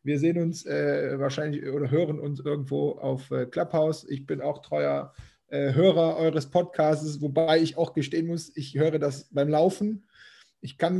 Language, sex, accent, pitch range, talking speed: German, male, German, 150-175 Hz, 175 wpm